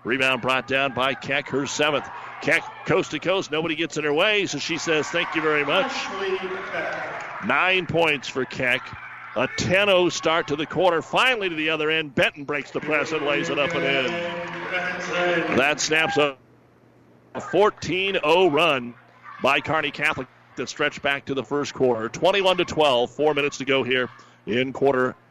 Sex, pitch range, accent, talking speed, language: male, 120-150 Hz, American, 170 wpm, English